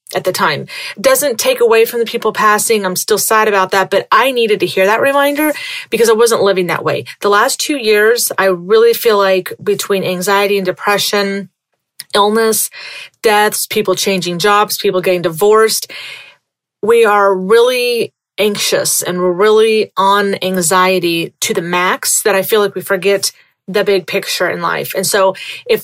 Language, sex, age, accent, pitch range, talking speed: English, female, 30-49, American, 190-235 Hz, 170 wpm